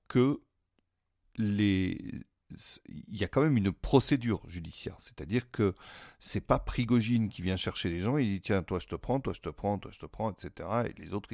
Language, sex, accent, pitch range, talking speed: French, male, French, 85-115 Hz, 210 wpm